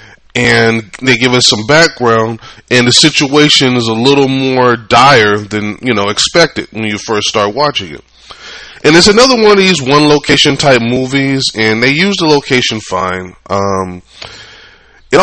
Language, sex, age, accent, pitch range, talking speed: English, male, 20-39, American, 110-140 Hz, 160 wpm